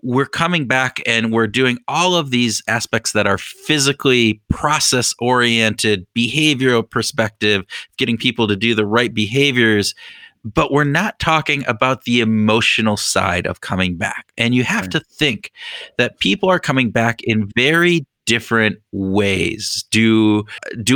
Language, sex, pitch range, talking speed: English, male, 110-150 Hz, 145 wpm